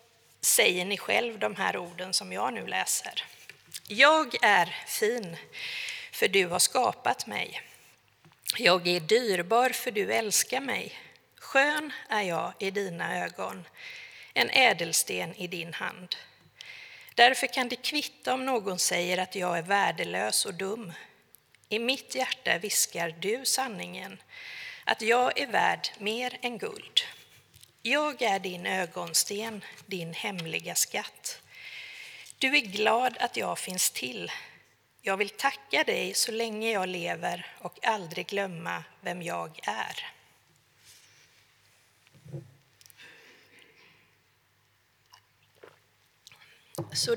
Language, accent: English, Swedish